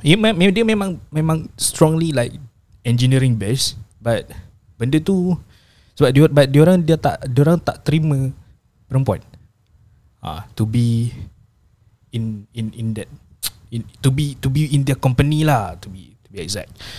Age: 20-39